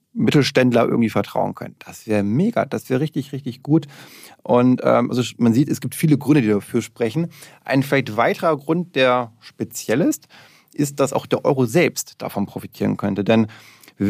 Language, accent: German, German